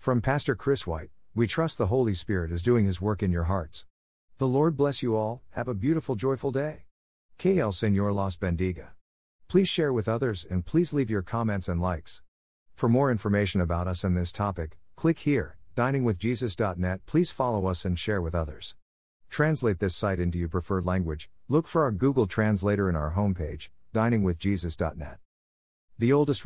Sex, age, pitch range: male, 50-69, 90-120 Hz